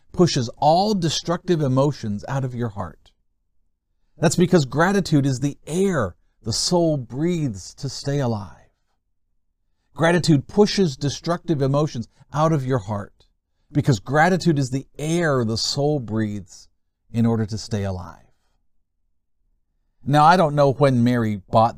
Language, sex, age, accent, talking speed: English, male, 50-69, American, 130 wpm